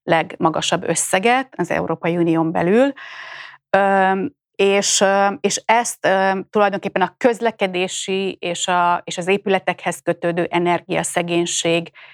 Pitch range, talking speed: 170-195 Hz, 90 wpm